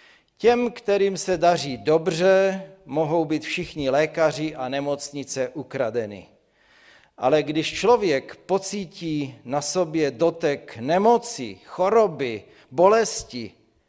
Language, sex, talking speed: Czech, male, 95 wpm